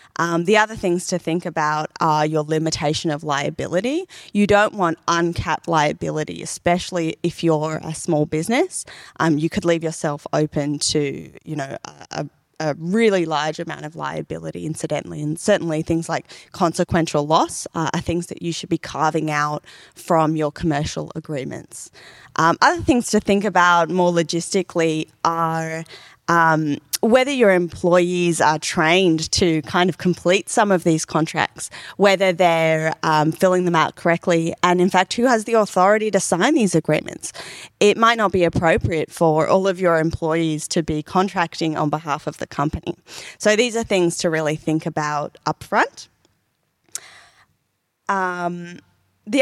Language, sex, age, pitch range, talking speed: English, female, 20-39, 155-185 Hz, 155 wpm